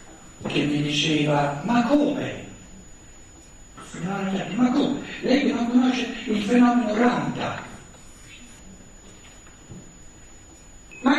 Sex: male